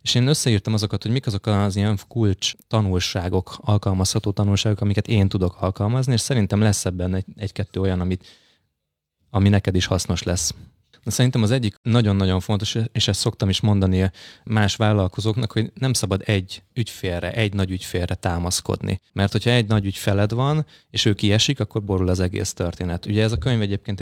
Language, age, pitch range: Hungarian, 20-39, 95-110 Hz